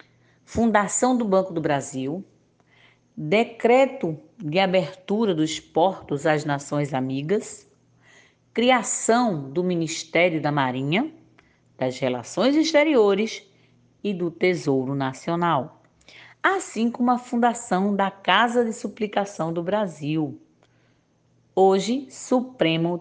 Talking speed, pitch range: 95 wpm, 150-220 Hz